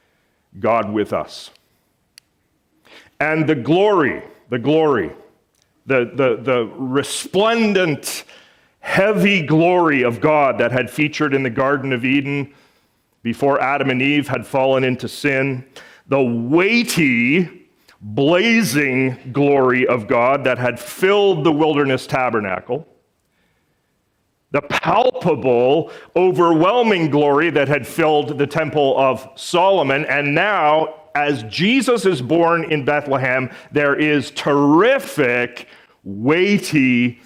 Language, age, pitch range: English, 40-59, 130-165 Hz